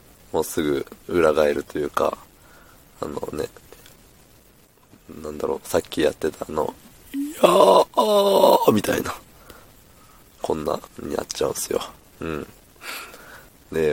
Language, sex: Japanese, male